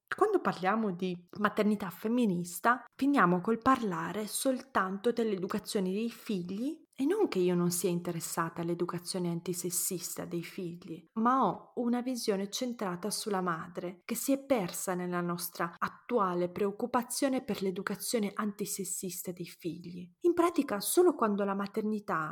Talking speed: 130 wpm